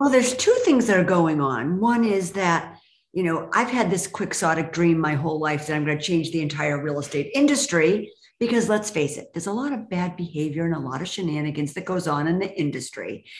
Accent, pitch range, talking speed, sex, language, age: American, 160-225 Hz, 235 wpm, female, English, 50-69